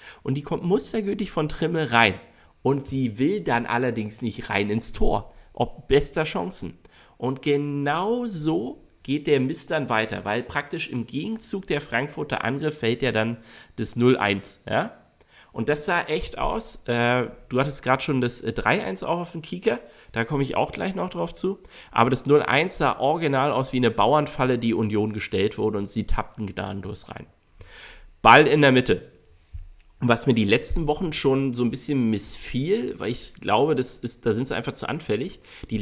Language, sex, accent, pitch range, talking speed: German, male, German, 115-150 Hz, 185 wpm